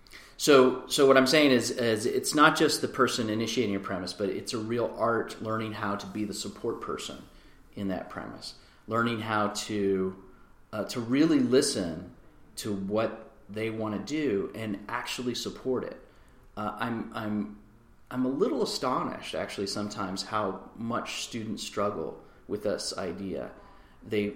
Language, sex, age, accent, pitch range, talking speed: English, male, 30-49, American, 105-125 Hz, 160 wpm